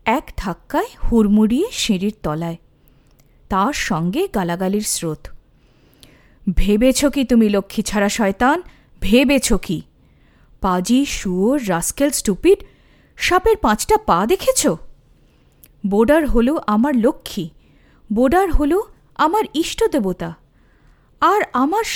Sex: female